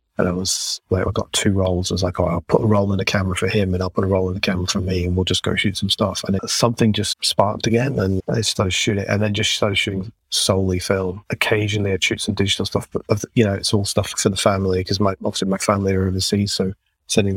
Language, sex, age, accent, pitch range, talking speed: English, male, 30-49, British, 95-105 Hz, 280 wpm